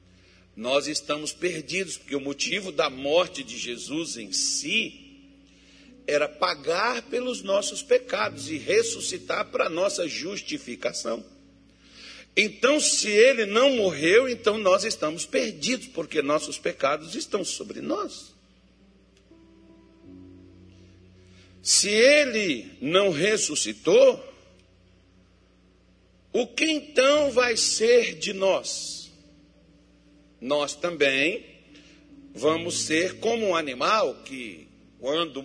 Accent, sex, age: Brazilian, male, 60-79